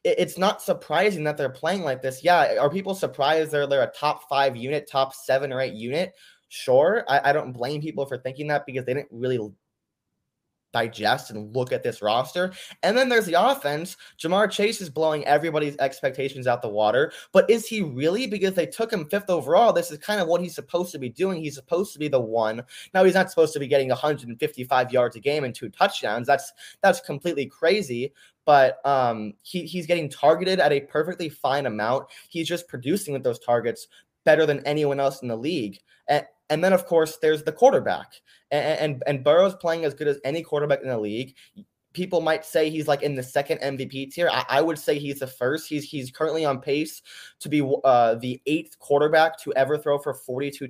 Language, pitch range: English, 130-160 Hz